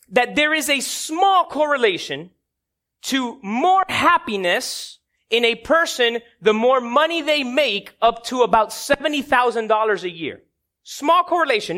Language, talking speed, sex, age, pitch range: English, 125 wpm, male, 30-49, 225-315 Hz